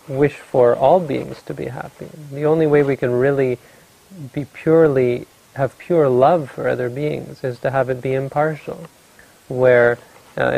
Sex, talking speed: male, 165 wpm